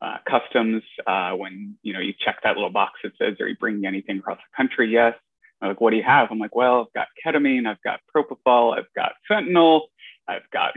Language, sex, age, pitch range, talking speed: English, male, 20-39, 110-170 Hz, 230 wpm